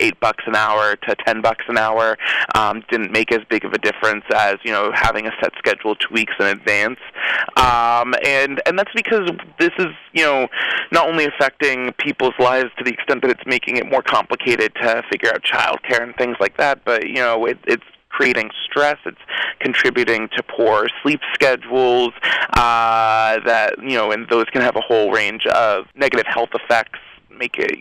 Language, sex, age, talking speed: English, male, 20-39, 190 wpm